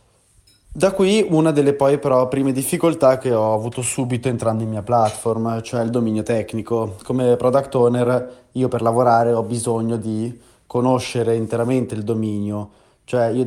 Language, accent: Italian, native